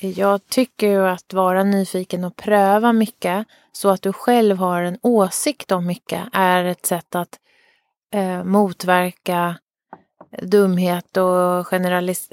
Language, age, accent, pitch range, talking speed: Swedish, 30-49, native, 180-215 Hz, 130 wpm